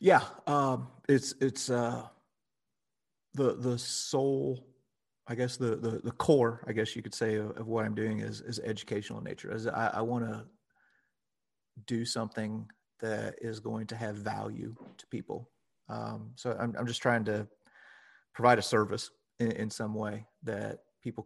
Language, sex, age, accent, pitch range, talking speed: English, male, 30-49, American, 110-120 Hz, 170 wpm